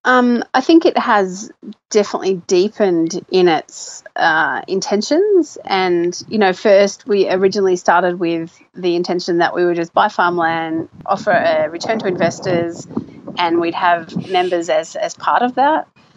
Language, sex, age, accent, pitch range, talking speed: English, female, 30-49, Australian, 175-215 Hz, 150 wpm